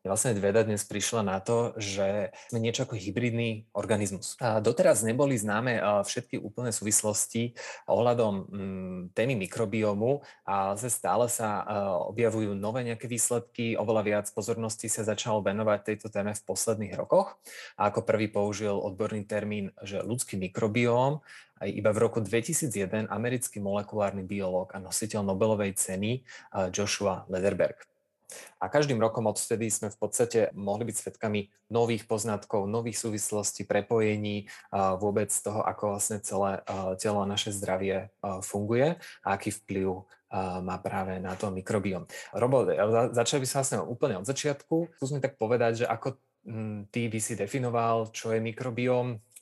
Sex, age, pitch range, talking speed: male, 20-39, 100-115 Hz, 140 wpm